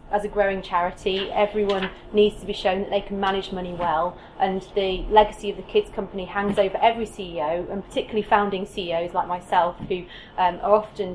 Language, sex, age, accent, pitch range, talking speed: English, female, 30-49, British, 190-220 Hz, 195 wpm